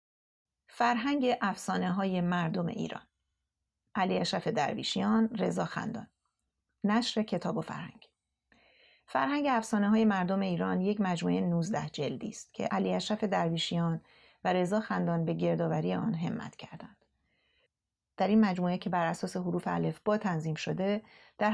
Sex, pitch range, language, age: female, 170-215 Hz, Persian, 30-49